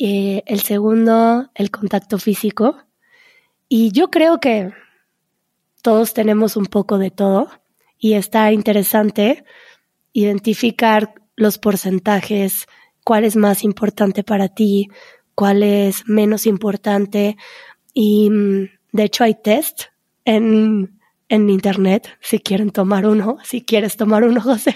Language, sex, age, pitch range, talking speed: Spanish, female, 20-39, 200-230 Hz, 120 wpm